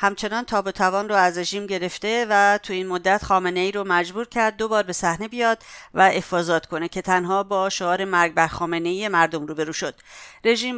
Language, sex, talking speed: English, female, 195 wpm